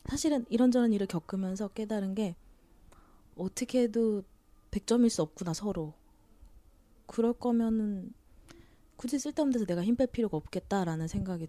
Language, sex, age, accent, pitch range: Korean, female, 20-39, native, 160-220 Hz